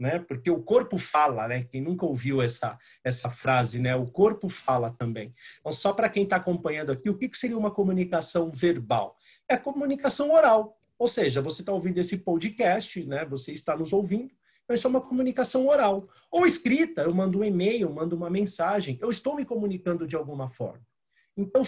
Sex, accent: male, Brazilian